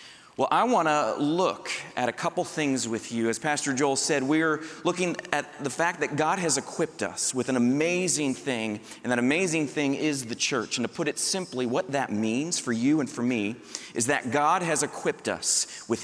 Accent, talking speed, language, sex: American, 210 wpm, English, male